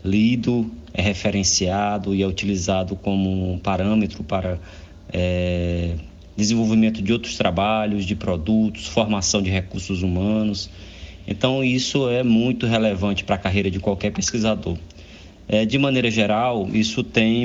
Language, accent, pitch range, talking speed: Portuguese, Brazilian, 95-115 Hz, 130 wpm